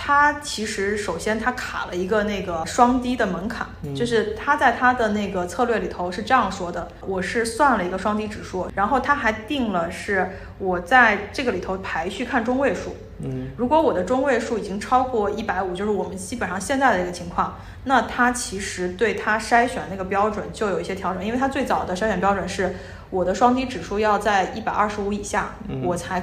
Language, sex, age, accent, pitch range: Chinese, female, 20-39, native, 190-240 Hz